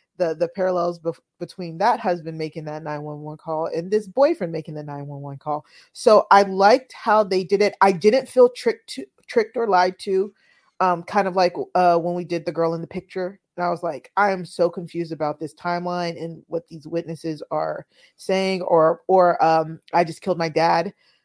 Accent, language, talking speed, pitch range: American, English, 215 wpm, 165-185 Hz